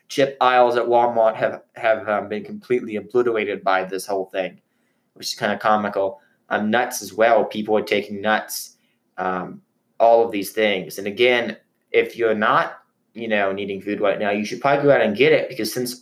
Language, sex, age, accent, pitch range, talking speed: English, male, 20-39, American, 105-135 Hz, 200 wpm